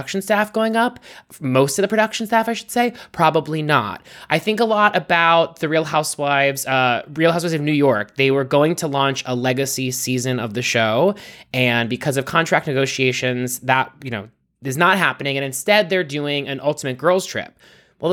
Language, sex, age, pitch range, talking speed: English, male, 20-39, 135-190 Hz, 195 wpm